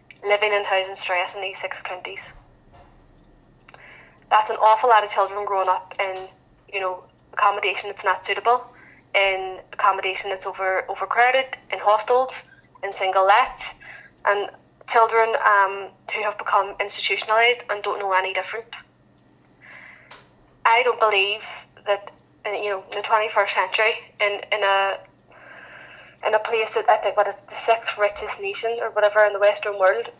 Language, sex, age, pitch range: English, female, 10-29, 195-220 Hz